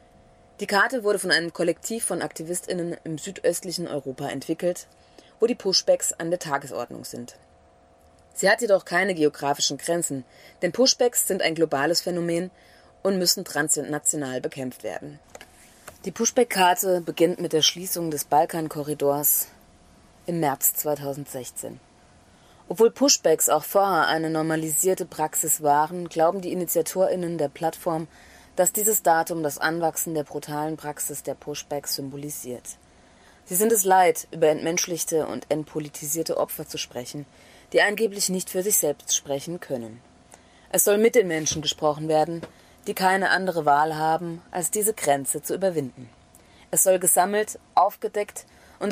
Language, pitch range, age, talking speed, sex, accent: German, 145-180 Hz, 30-49, 135 wpm, female, German